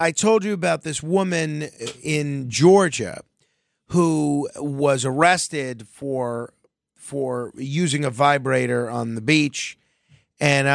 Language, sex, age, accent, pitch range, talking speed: English, male, 30-49, American, 125-155 Hz, 110 wpm